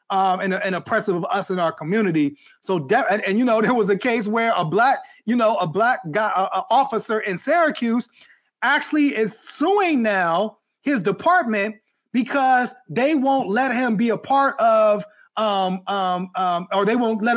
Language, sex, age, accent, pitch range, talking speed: English, male, 30-49, American, 200-240 Hz, 175 wpm